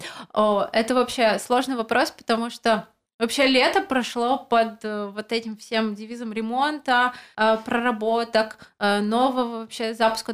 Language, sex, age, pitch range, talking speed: Russian, female, 20-39, 200-235 Hz, 135 wpm